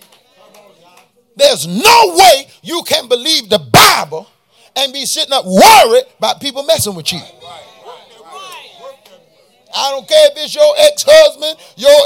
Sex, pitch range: male, 225-360 Hz